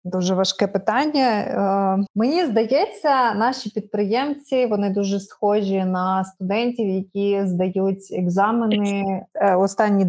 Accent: native